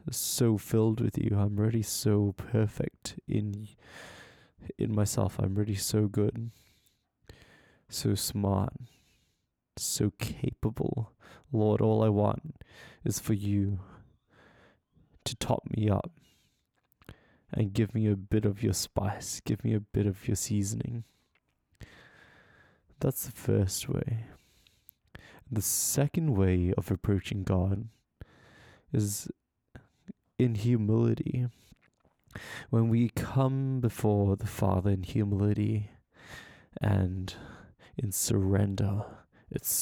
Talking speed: 105 wpm